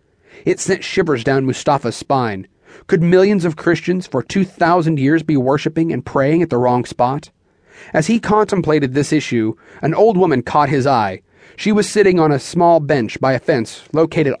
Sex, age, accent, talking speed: male, 30-49, American, 185 wpm